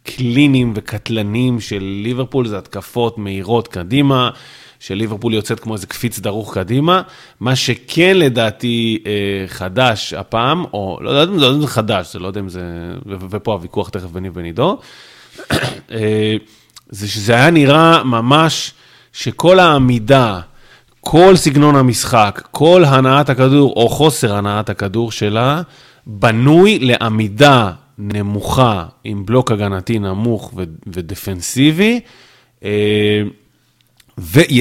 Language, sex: Hebrew, male